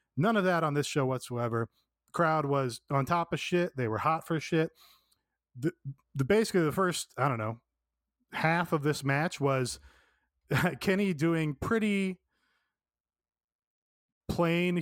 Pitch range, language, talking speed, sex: 130-175 Hz, English, 140 wpm, male